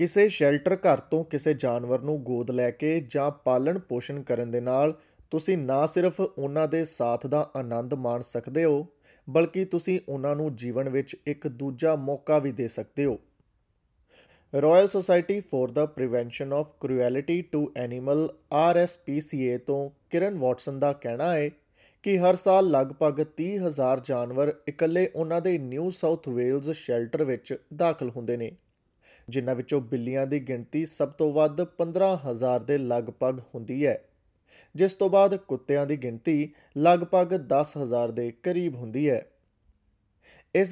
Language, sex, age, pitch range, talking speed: Punjabi, male, 20-39, 130-165 Hz, 125 wpm